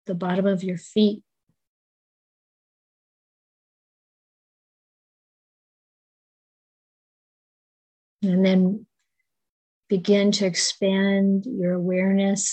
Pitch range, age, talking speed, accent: 180-200 Hz, 40-59, 55 wpm, American